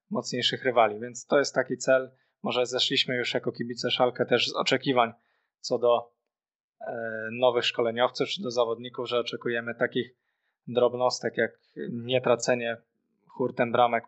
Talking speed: 135 wpm